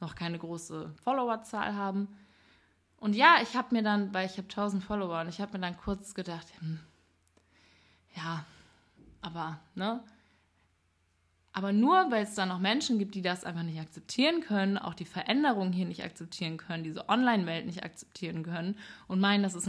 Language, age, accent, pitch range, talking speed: German, 20-39, German, 170-230 Hz, 175 wpm